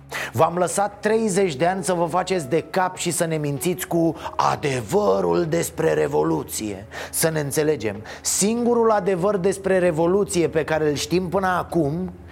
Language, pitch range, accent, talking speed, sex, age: Romanian, 160-205 Hz, native, 150 wpm, male, 30-49